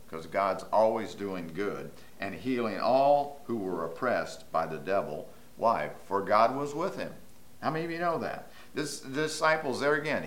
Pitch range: 115-165 Hz